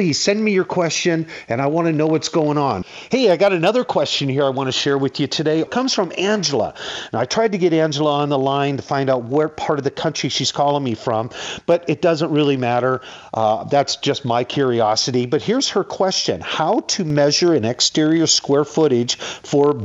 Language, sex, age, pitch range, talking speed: English, male, 50-69, 120-155 Hz, 220 wpm